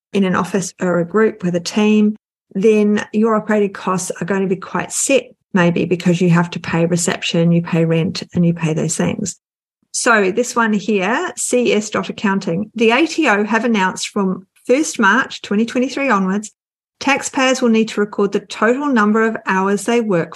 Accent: Australian